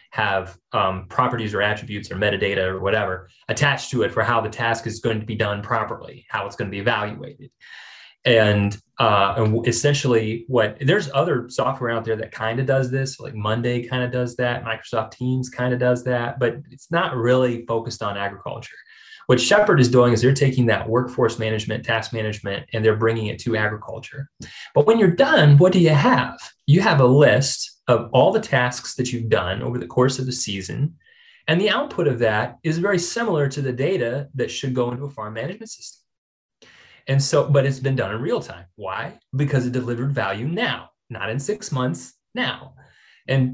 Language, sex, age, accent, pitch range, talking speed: English, male, 20-39, American, 110-135 Hz, 200 wpm